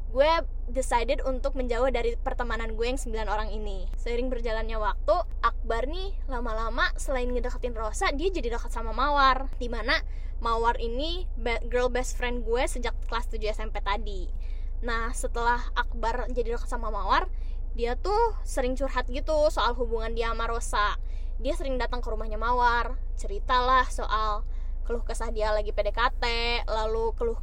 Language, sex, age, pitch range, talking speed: Indonesian, female, 20-39, 230-270 Hz, 155 wpm